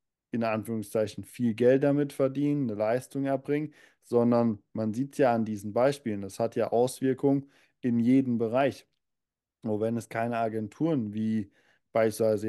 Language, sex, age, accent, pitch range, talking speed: German, male, 20-39, German, 110-125 Hz, 150 wpm